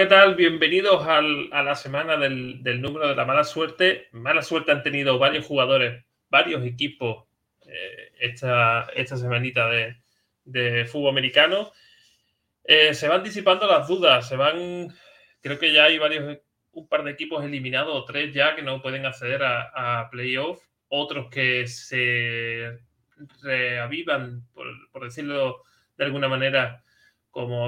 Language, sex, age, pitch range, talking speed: Spanish, male, 20-39, 120-150 Hz, 145 wpm